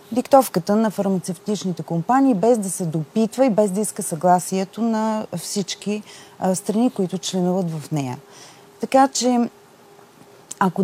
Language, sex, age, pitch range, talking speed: Bulgarian, female, 30-49, 175-220 Hz, 135 wpm